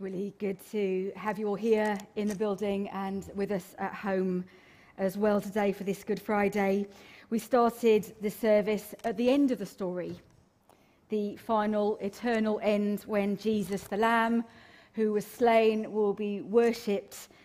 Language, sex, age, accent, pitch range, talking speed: English, female, 40-59, British, 195-230 Hz, 160 wpm